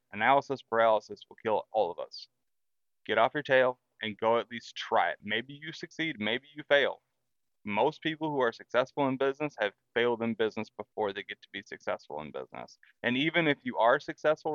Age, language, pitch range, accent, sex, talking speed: 20-39, English, 110-135 Hz, American, male, 200 wpm